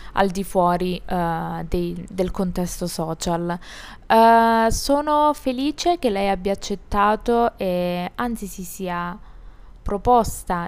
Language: Italian